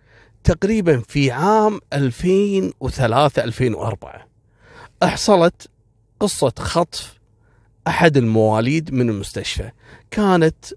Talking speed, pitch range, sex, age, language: 65 wpm, 115-155 Hz, male, 40-59, Arabic